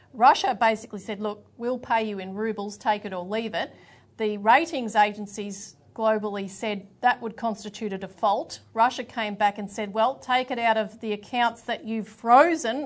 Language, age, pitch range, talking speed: English, 40-59, 210-245 Hz, 180 wpm